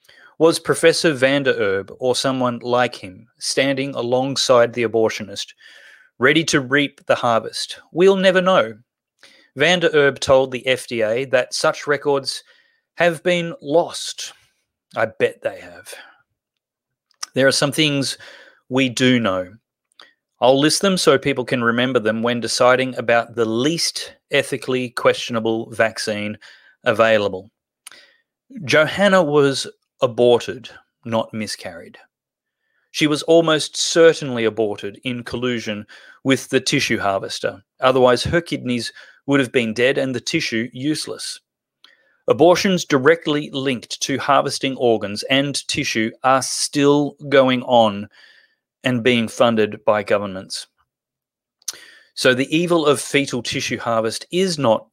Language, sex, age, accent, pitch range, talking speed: English, male, 30-49, Australian, 120-155 Hz, 120 wpm